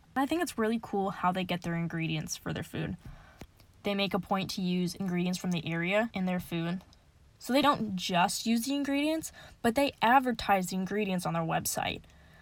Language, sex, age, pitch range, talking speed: English, female, 10-29, 180-220 Hz, 200 wpm